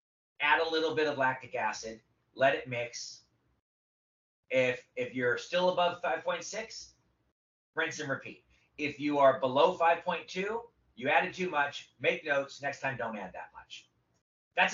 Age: 30-49